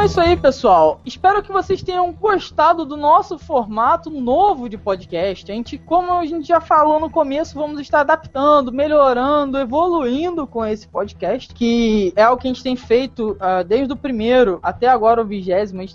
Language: Portuguese